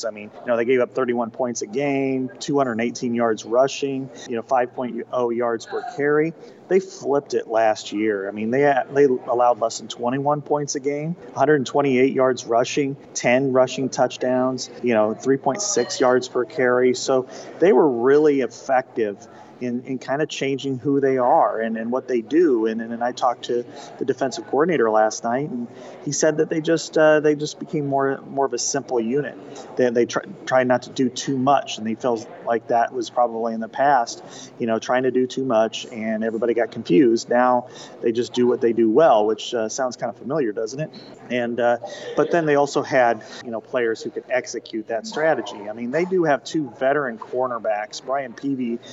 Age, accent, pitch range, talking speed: 30-49, American, 120-140 Hz, 200 wpm